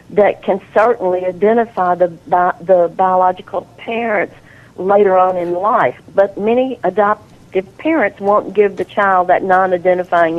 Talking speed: 125 wpm